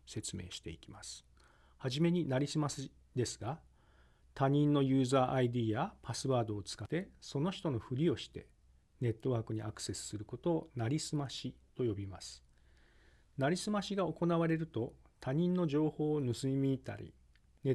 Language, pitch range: Japanese, 105-150 Hz